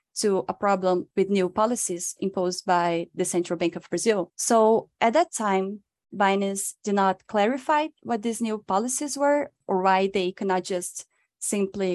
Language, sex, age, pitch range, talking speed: English, female, 20-39, 180-225 Hz, 165 wpm